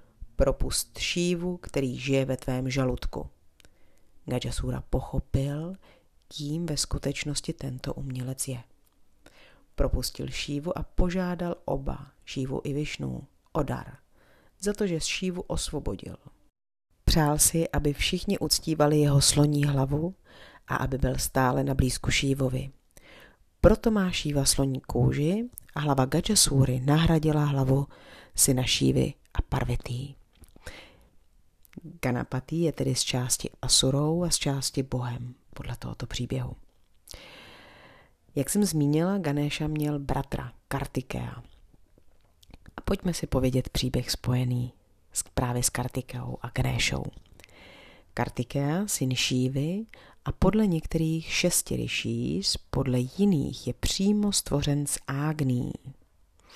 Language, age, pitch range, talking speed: Czech, 40-59, 125-155 Hz, 110 wpm